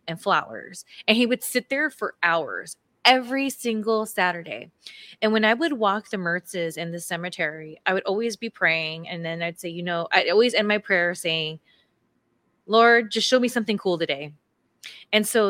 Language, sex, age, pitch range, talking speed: English, female, 20-39, 175-225 Hz, 180 wpm